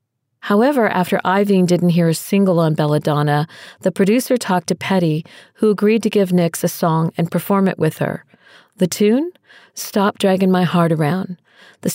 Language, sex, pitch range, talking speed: English, female, 160-195 Hz, 170 wpm